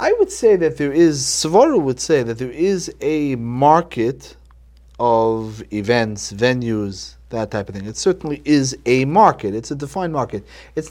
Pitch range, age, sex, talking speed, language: 100-145 Hz, 30-49, male, 170 wpm, English